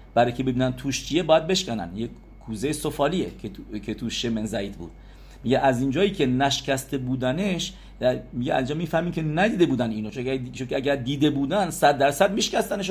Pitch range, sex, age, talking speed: 110-165 Hz, male, 50-69, 160 wpm